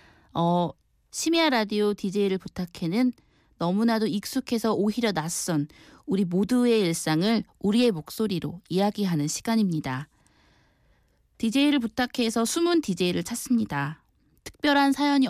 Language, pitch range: Korean, 175-235 Hz